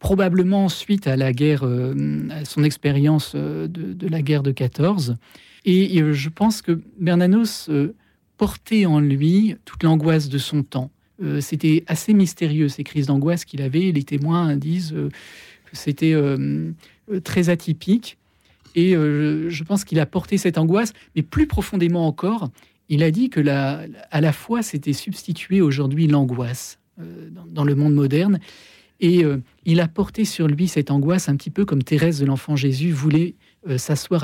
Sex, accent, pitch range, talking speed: male, French, 140-175 Hz, 155 wpm